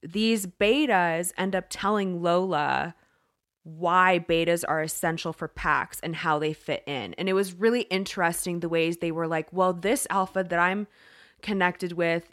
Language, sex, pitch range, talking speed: English, female, 170-200 Hz, 165 wpm